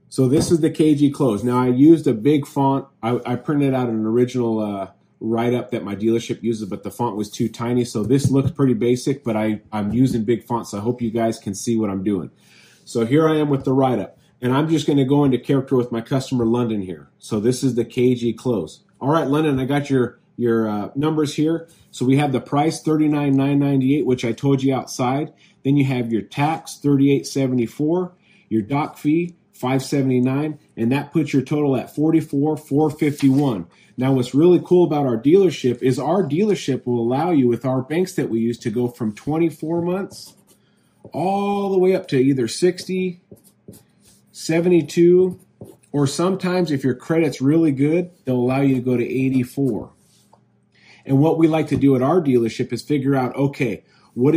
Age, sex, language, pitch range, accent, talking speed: 30-49, male, English, 120-150 Hz, American, 195 wpm